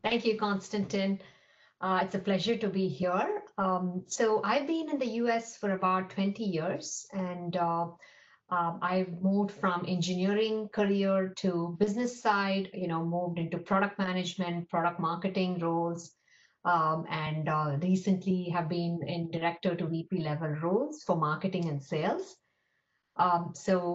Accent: Indian